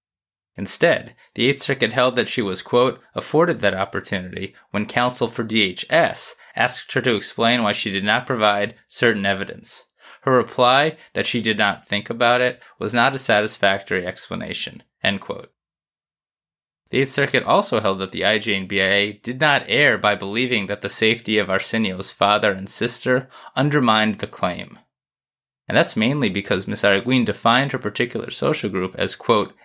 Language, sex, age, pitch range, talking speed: English, male, 20-39, 100-125 Hz, 160 wpm